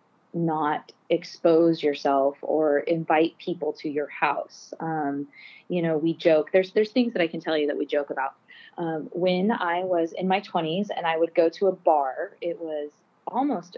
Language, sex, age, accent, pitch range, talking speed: English, female, 20-39, American, 160-190 Hz, 185 wpm